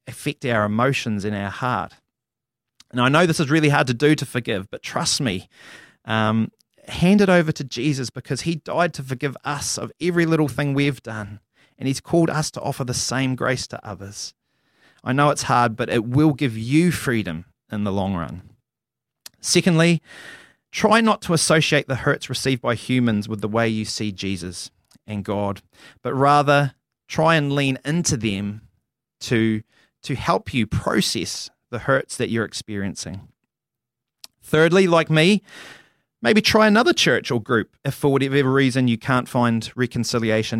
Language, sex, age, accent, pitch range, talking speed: English, male, 30-49, Australian, 110-150 Hz, 170 wpm